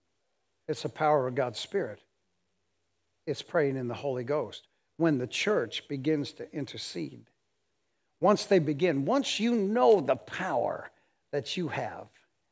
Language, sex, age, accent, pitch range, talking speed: English, male, 60-79, American, 130-175 Hz, 140 wpm